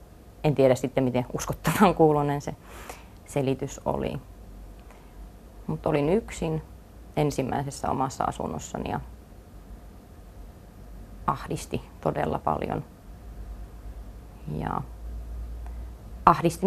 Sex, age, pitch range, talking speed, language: female, 30-49, 90-145 Hz, 75 wpm, Finnish